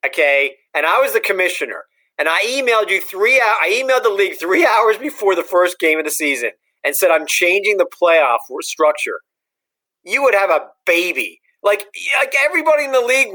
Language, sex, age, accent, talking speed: English, male, 40-59, American, 190 wpm